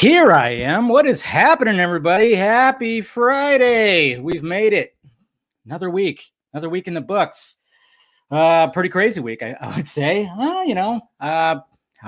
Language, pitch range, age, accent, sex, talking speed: English, 135-175 Hz, 20-39, American, male, 160 wpm